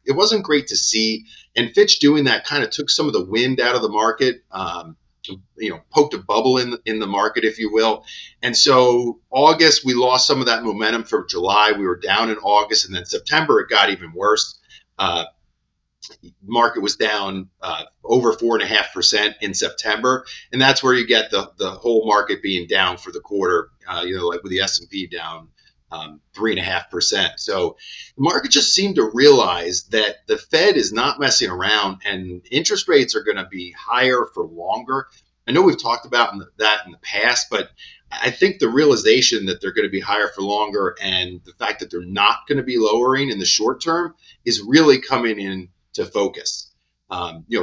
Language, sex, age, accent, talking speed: English, male, 40-59, American, 200 wpm